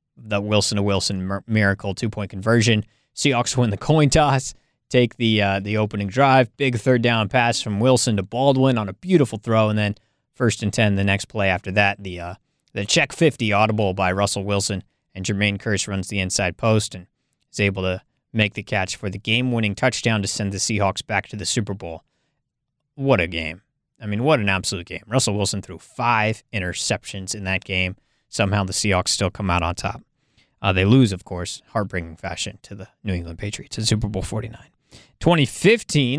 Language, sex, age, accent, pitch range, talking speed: English, male, 20-39, American, 100-130 Hz, 190 wpm